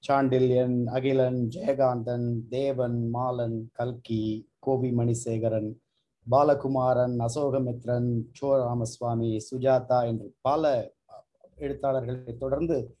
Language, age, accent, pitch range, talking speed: Tamil, 30-49, native, 120-155 Hz, 75 wpm